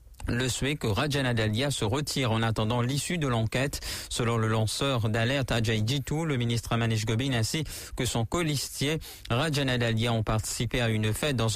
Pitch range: 115-135 Hz